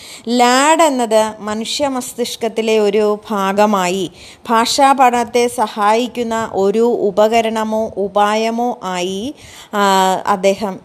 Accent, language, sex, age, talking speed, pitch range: native, Malayalam, female, 20-39, 65 wpm, 200-250 Hz